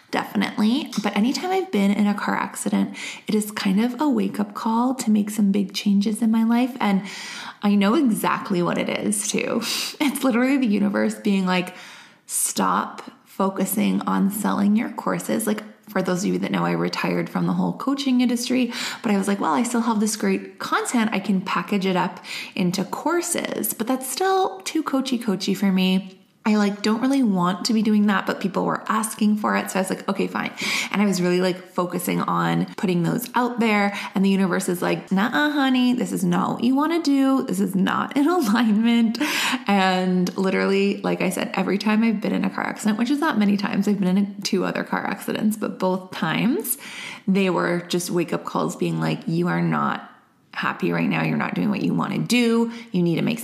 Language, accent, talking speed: English, American, 215 wpm